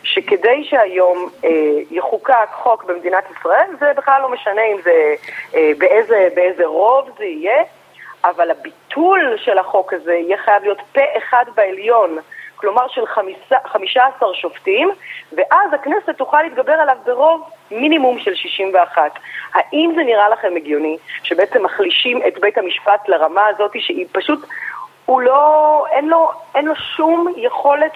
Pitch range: 200-320 Hz